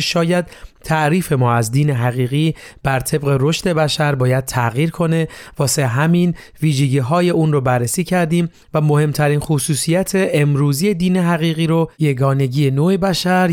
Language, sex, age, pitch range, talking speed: Persian, male, 30-49, 135-165 Hz, 135 wpm